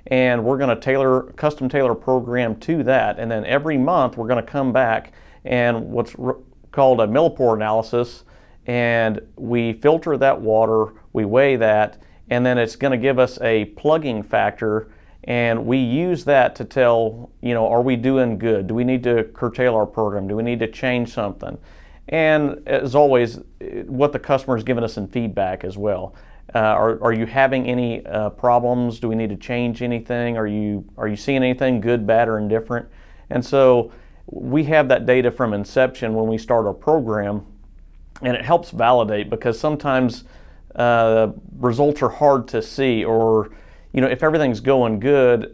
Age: 40-59